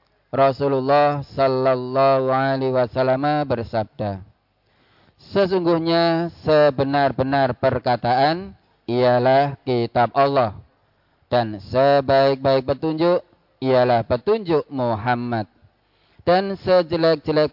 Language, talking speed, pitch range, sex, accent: Indonesian, 65 wpm, 120-150 Hz, male, native